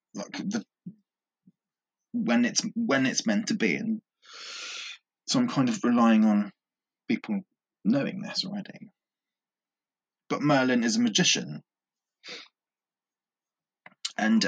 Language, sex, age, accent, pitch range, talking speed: English, male, 20-39, British, 145-235 Hz, 110 wpm